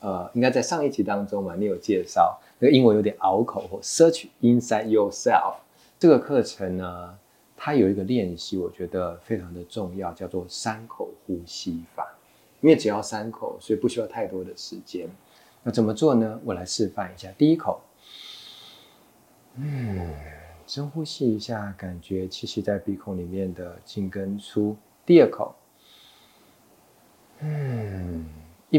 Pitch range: 95-120 Hz